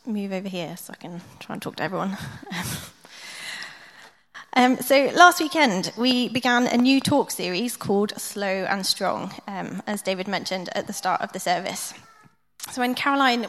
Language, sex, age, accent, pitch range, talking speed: English, female, 20-39, British, 200-255 Hz, 170 wpm